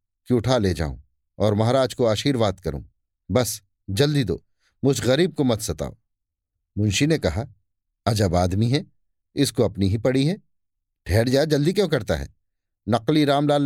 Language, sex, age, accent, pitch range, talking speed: Hindi, male, 50-69, native, 95-150 Hz, 160 wpm